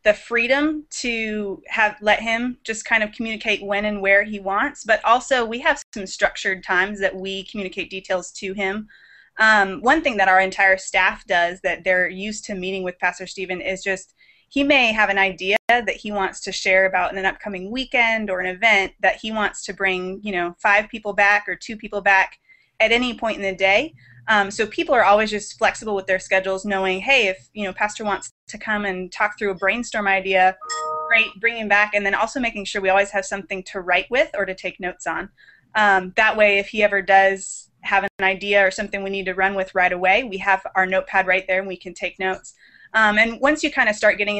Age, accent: 20-39, American